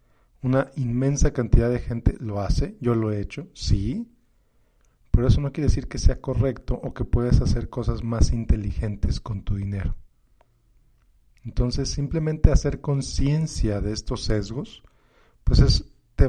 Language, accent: Spanish, Mexican